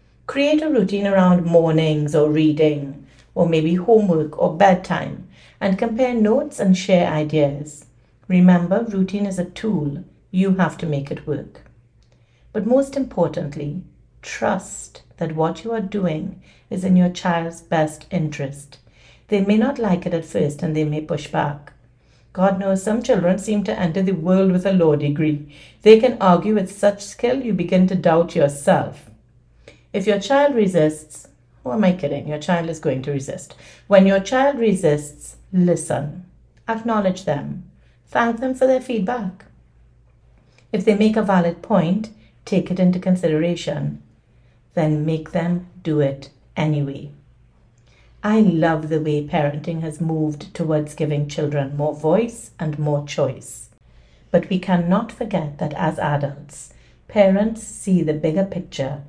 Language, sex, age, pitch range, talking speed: English, female, 60-79, 150-195 Hz, 150 wpm